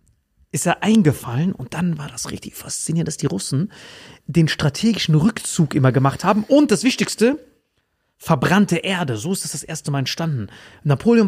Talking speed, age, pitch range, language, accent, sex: 170 wpm, 30-49, 145-205 Hz, German, German, male